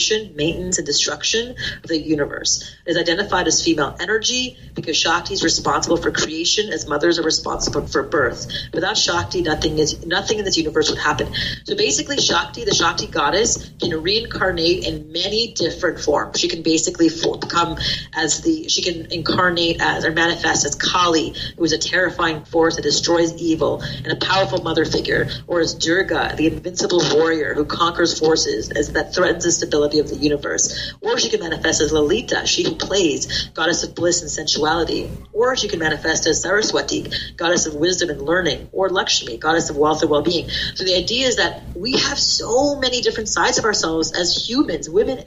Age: 40-59